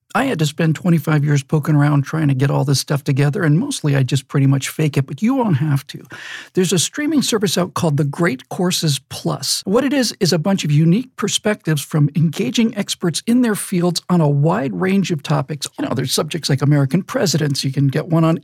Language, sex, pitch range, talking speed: English, male, 150-190 Hz, 230 wpm